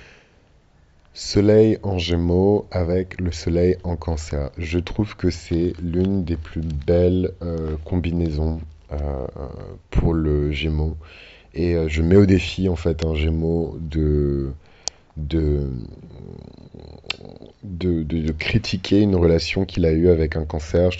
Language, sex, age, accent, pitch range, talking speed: French, male, 30-49, French, 80-90 Hz, 125 wpm